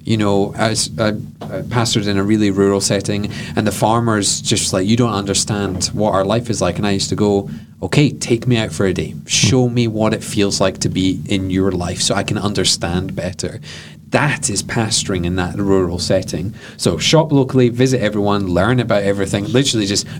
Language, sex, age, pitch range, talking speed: English, male, 30-49, 95-120 Hz, 200 wpm